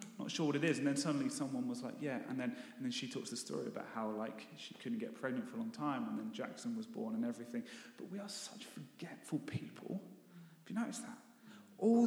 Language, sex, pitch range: English, male, 155-235 Hz